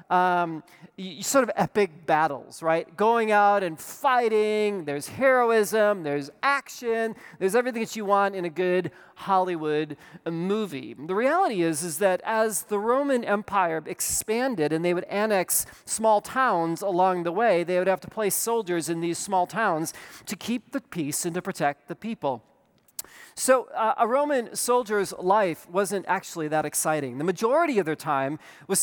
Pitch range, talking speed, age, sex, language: 165-220 Hz, 160 wpm, 40-59, male, English